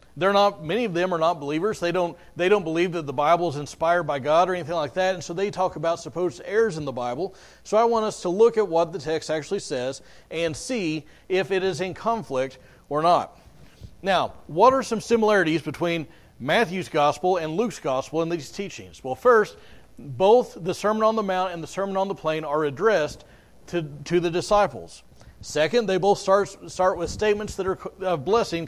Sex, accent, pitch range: male, American, 155-195 Hz